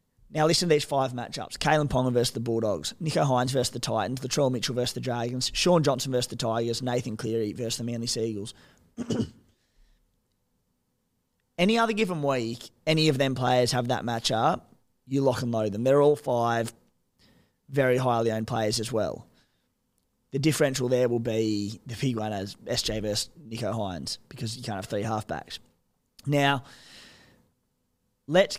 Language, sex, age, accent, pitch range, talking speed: English, male, 20-39, Australian, 115-145 Hz, 165 wpm